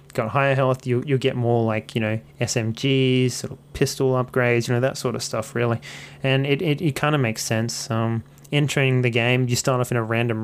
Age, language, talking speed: 20-39, English, 220 wpm